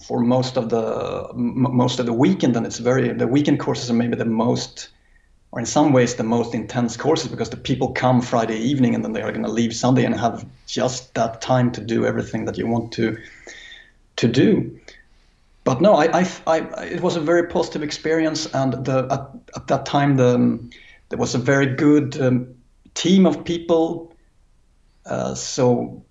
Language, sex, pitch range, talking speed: English, male, 115-150 Hz, 185 wpm